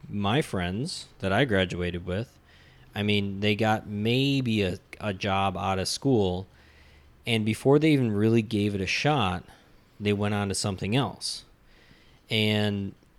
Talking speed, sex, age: 150 wpm, male, 20-39